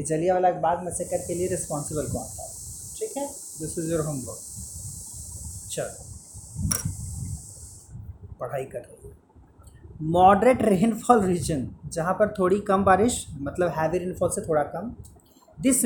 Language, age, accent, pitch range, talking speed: Hindi, 30-49, native, 160-245 Hz, 130 wpm